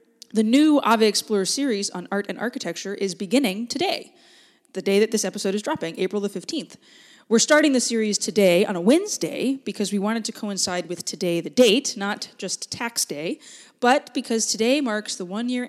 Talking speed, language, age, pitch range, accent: 185 wpm, English, 20-39, 175-220 Hz, American